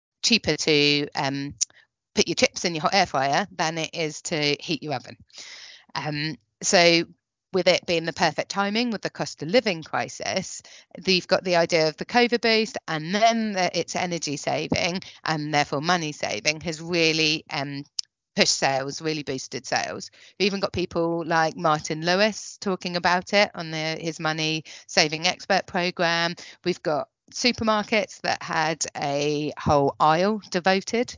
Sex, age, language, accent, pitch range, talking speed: female, 30-49, English, British, 155-205 Hz, 165 wpm